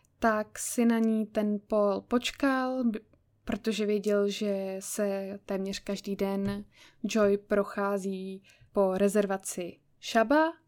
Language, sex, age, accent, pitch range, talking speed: Czech, female, 10-29, native, 200-235 Hz, 105 wpm